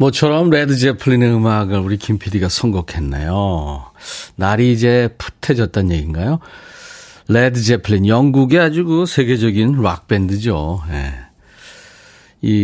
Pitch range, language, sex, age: 95-130 Hz, Korean, male, 40-59